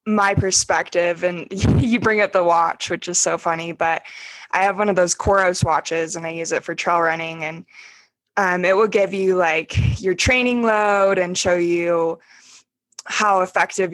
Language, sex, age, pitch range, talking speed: English, female, 20-39, 175-205 Hz, 180 wpm